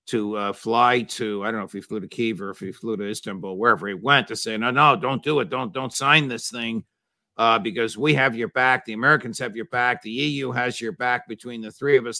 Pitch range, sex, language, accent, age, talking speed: 110-135 Hz, male, English, American, 50-69, 265 wpm